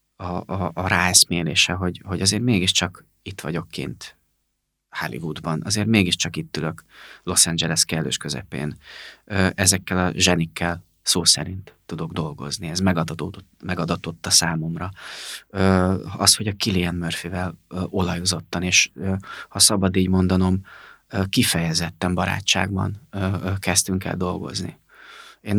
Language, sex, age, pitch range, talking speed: Hungarian, male, 30-49, 90-100 Hz, 115 wpm